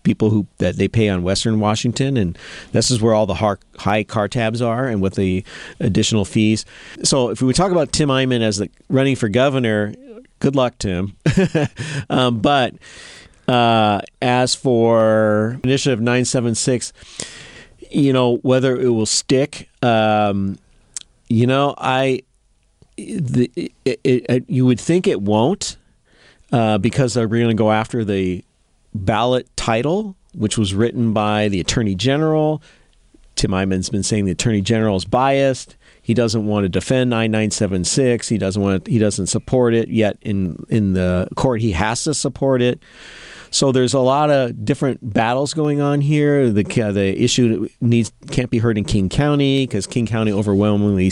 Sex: male